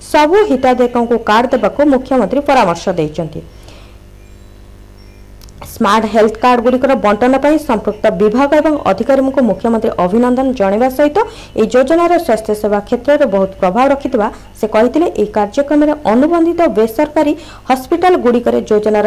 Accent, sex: native, female